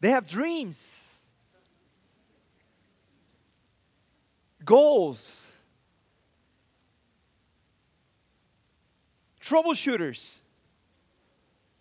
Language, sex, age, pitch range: English, male, 40-59, 190-270 Hz